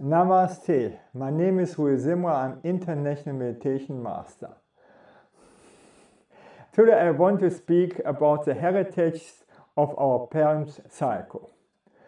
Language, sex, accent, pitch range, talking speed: English, male, German, 150-185 Hz, 105 wpm